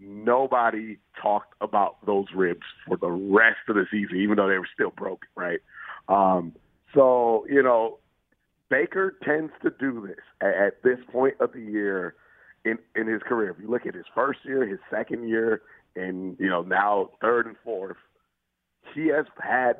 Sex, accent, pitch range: male, American, 100-125 Hz